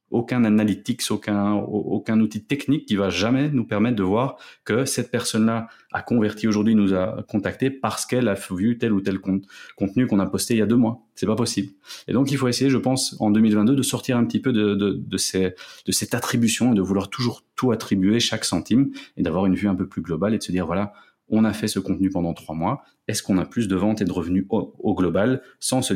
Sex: male